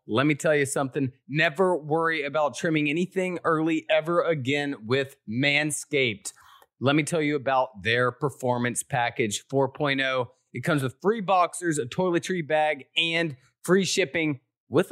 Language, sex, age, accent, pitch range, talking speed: English, male, 30-49, American, 135-175 Hz, 145 wpm